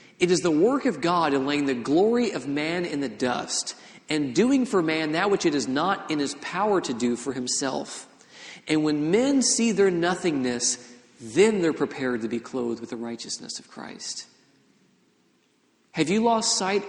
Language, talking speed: English, 185 wpm